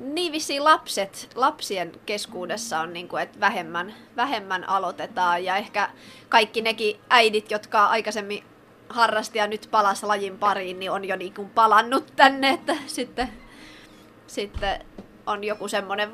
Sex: female